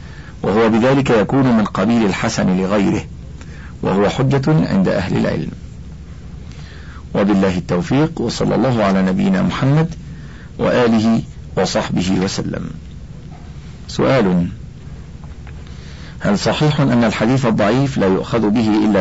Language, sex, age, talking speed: Arabic, male, 50-69, 100 wpm